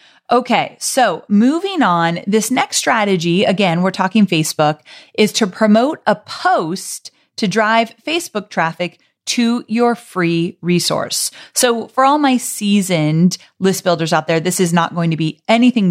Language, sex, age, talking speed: English, female, 30-49, 150 wpm